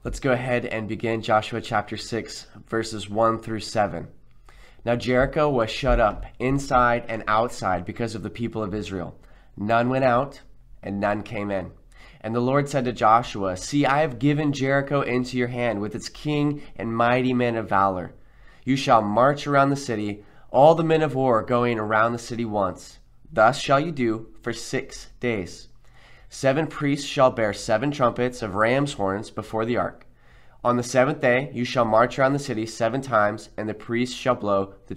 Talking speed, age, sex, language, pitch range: 185 wpm, 20-39, male, English, 110-130 Hz